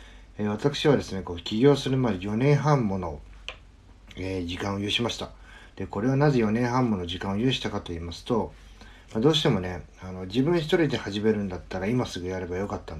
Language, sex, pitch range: Japanese, male, 85-120 Hz